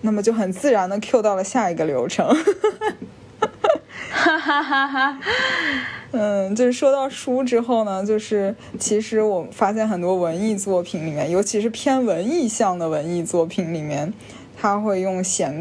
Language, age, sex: Chinese, 20-39, female